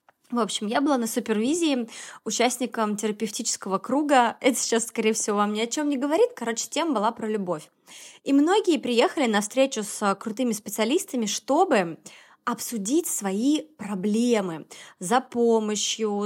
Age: 20-39